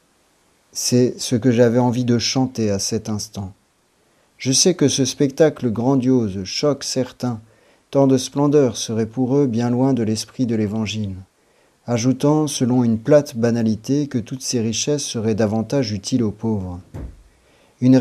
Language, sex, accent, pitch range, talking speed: French, male, French, 110-135 Hz, 150 wpm